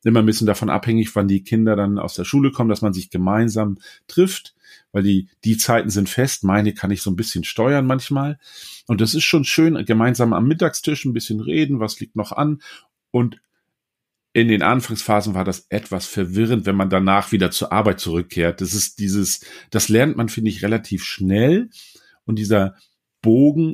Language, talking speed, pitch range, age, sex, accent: German, 185 wpm, 100-120 Hz, 40-59, male, German